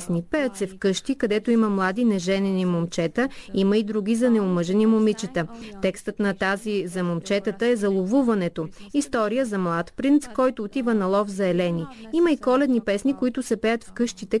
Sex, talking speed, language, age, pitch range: female, 180 wpm, Bulgarian, 30-49, 190-230 Hz